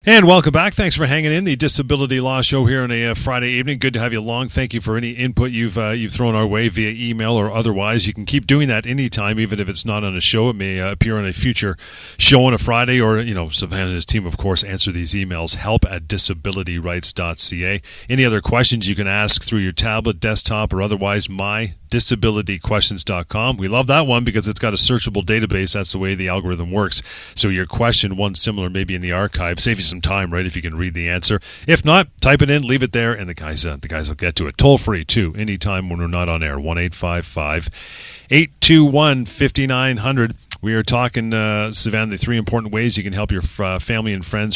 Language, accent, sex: English, American, male